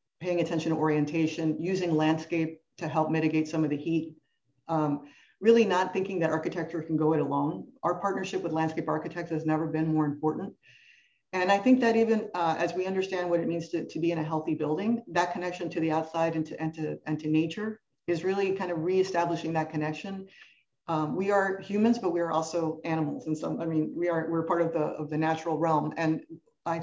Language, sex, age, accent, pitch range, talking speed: English, female, 50-69, American, 155-180 Hz, 215 wpm